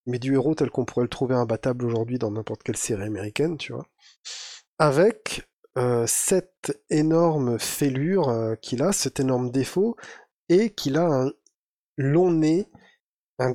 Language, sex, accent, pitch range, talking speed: French, male, French, 115-155 Hz, 155 wpm